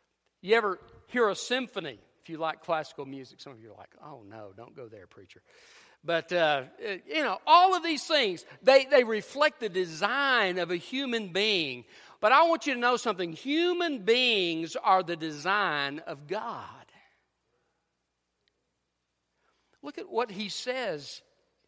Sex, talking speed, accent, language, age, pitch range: male, 160 wpm, American, English, 50-69, 160-230 Hz